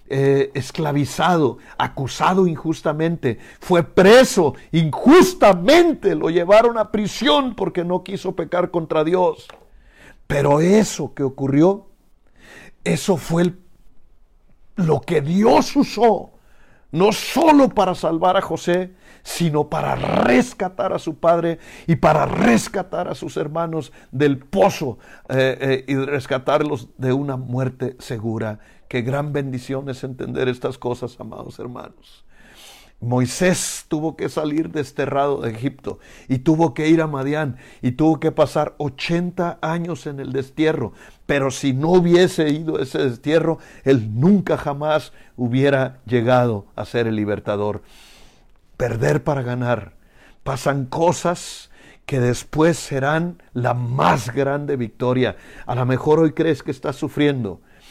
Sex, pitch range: male, 130-175 Hz